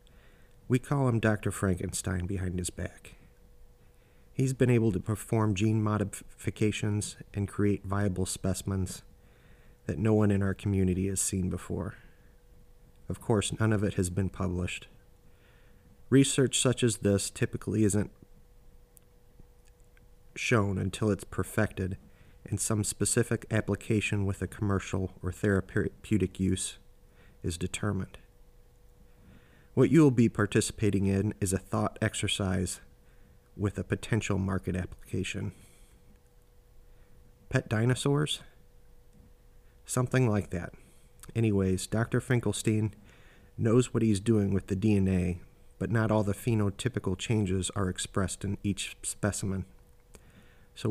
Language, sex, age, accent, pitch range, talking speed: English, male, 30-49, American, 95-110 Hz, 115 wpm